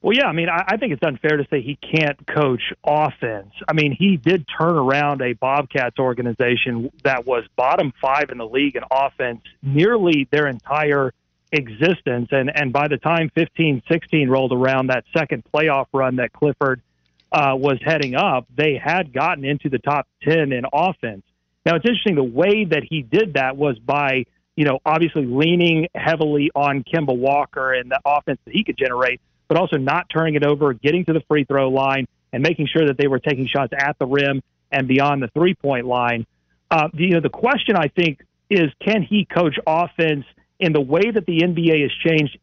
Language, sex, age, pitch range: English, male, 40-59, 135-165 Hz